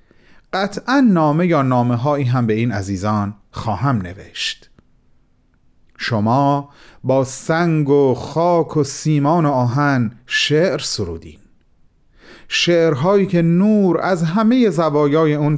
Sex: male